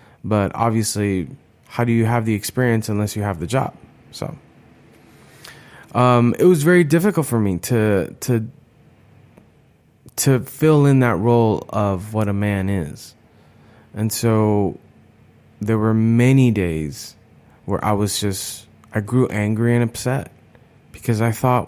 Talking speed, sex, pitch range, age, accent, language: 140 wpm, male, 110-140 Hz, 20-39, American, English